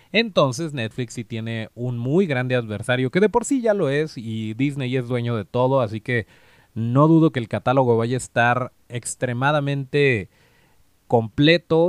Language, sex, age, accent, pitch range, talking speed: Spanish, male, 30-49, Mexican, 115-155 Hz, 165 wpm